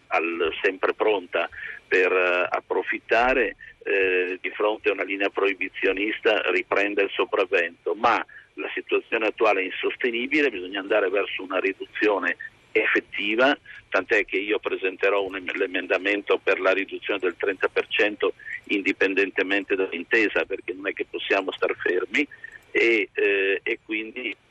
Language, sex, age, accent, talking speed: Italian, male, 50-69, native, 130 wpm